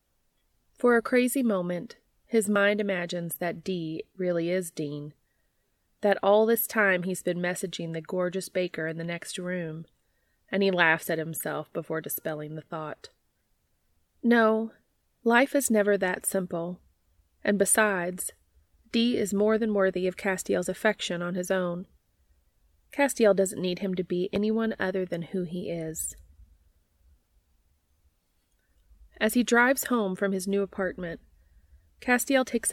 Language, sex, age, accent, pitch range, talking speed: English, female, 30-49, American, 165-210 Hz, 140 wpm